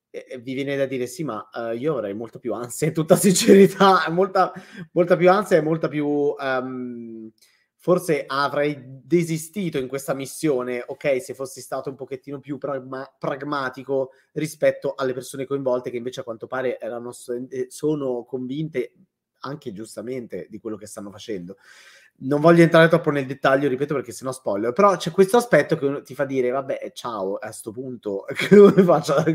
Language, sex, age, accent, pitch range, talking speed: Italian, male, 30-49, native, 130-170 Hz, 170 wpm